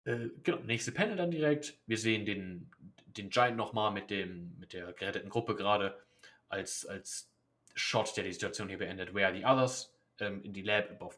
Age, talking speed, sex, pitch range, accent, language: 30-49, 190 wpm, male, 100-130 Hz, German, German